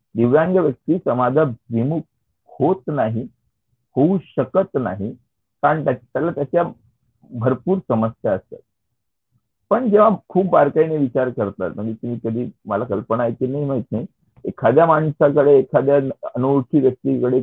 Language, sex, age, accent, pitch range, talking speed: Marathi, male, 50-69, native, 105-135 Hz, 105 wpm